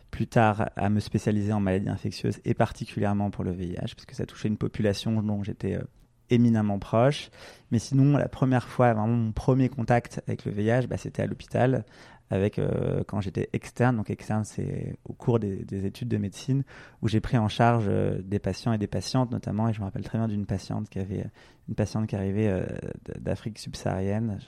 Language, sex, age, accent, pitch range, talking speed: French, male, 20-39, French, 105-120 Hz, 205 wpm